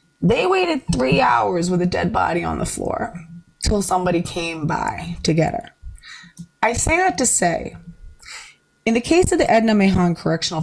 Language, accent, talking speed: English, American, 175 wpm